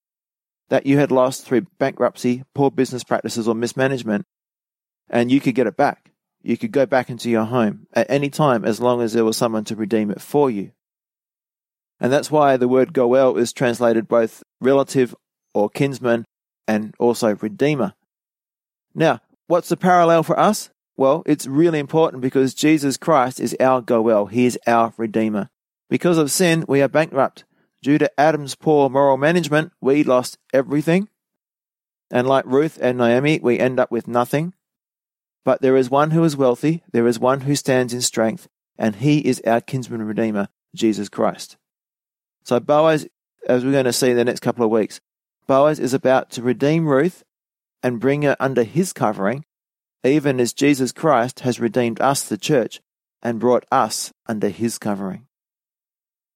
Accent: Australian